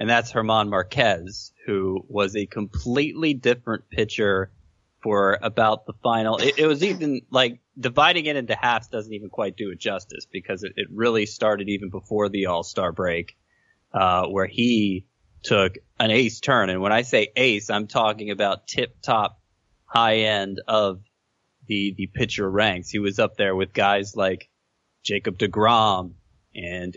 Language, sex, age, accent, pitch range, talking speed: English, male, 20-39, American, 95-120 Hz, 160 wpm